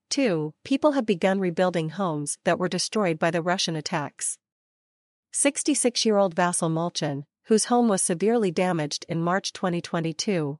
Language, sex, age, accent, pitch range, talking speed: English, female, 40-59, American, 160-205 Hz, 145 wpm